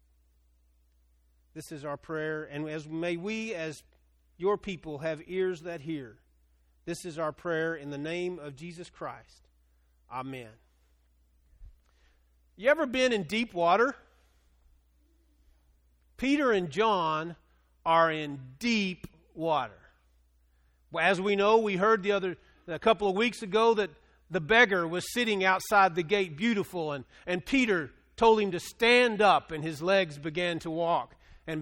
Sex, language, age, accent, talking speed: male, English, 40-59, American, 140 wpm